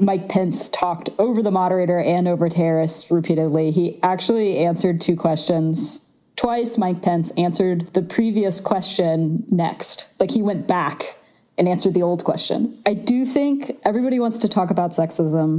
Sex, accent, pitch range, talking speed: female, American, 165-195 Hz, 160 wpm